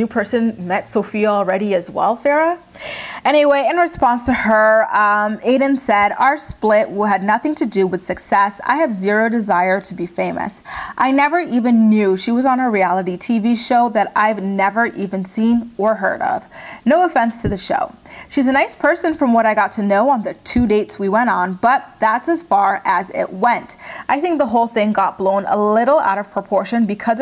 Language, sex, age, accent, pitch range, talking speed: English, female, 30-49, American, 195-245 Hz, 200 wpm